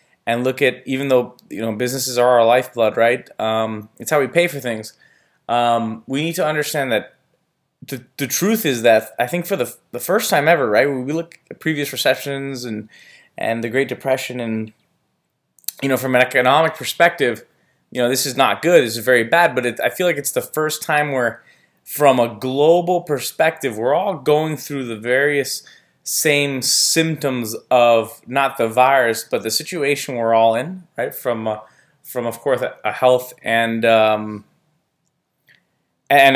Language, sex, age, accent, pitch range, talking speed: English, male, 20-39, American, 115-140 Hz, 180 wpm